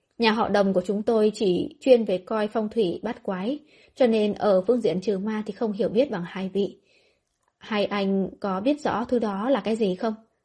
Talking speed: 225 wpm